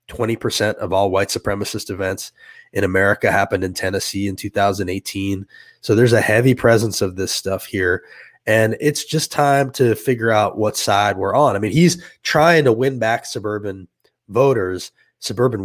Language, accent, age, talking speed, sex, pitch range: English, American, 20-39, 160 wpm, male, 100-120 Hz